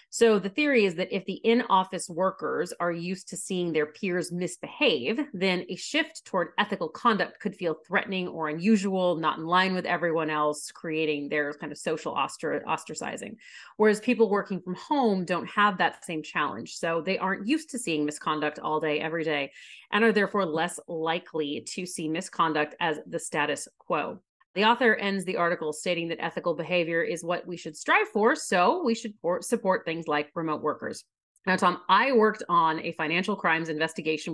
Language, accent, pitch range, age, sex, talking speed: English, American, 165-200 Hz, 30-49, female, 180 wpm